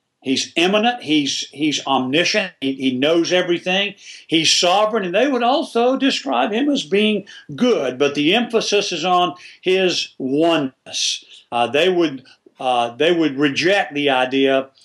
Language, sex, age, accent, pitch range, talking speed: English, male, 50-69, American, 140-190 Hz, 135 wpm